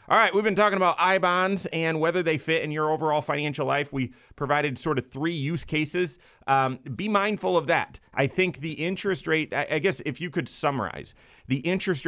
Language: English